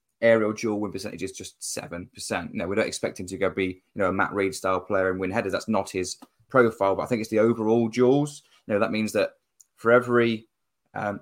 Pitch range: 100-115 Hz